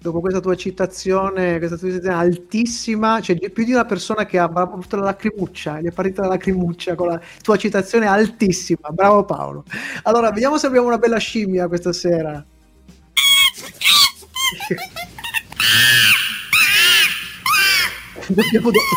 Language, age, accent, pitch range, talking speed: Italian, 30-49, native, 165-220 Hz, 125 wpm